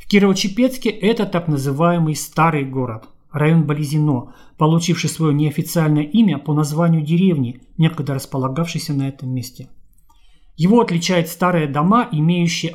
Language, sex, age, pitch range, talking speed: Russian, male, 40-59, 145-185 Hz, 120 wpm